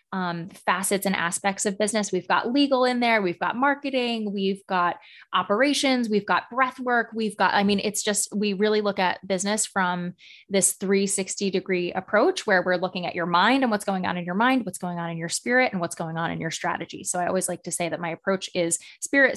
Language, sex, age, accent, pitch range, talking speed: English, female, 20-39, American, 185-220 Hz, 230 wpm